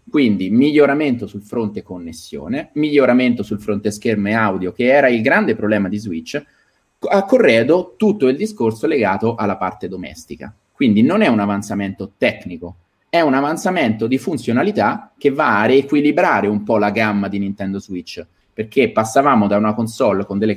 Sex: male